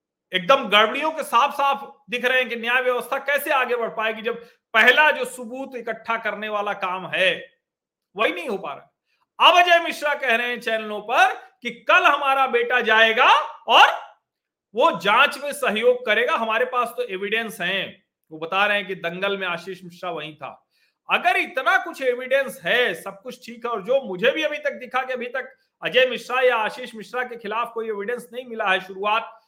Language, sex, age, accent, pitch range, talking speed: Hindi, male, 40-59, native, 195-265 Hz, 195 wpm